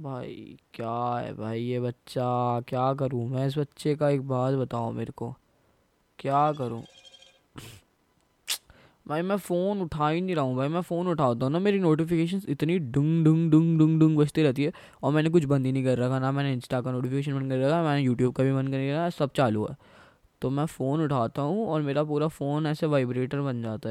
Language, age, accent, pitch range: Hindi, 10-29, native, 120-145 Hz